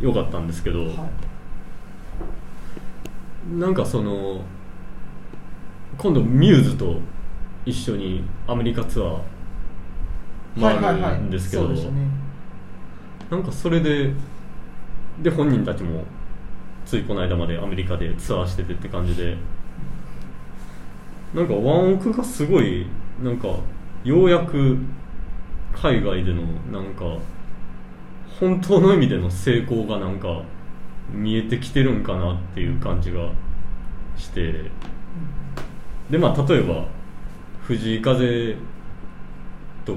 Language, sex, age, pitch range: Japanese, male, 20-39, 90-125 Hz